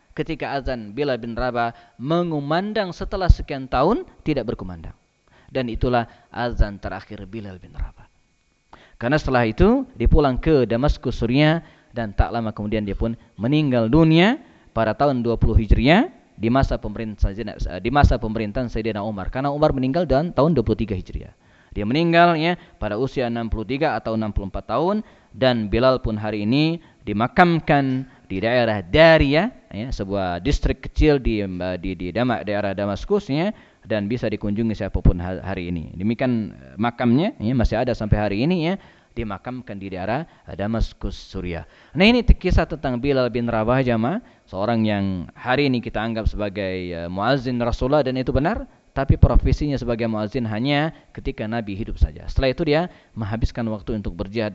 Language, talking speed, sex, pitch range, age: Indonesian, 145 wpm, male, 105-135 Hz, 20-39